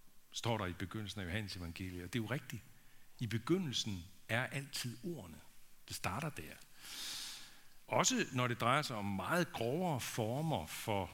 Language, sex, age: Danish, male, 60-79